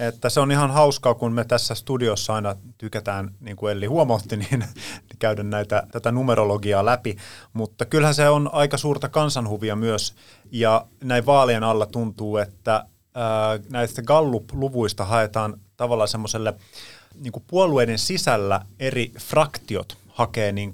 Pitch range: 100-120 Hz